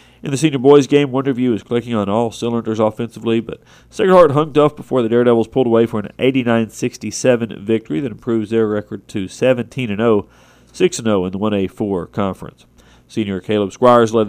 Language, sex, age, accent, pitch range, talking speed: English, male, 40-59, American, 105-125 Hz, 170 wpm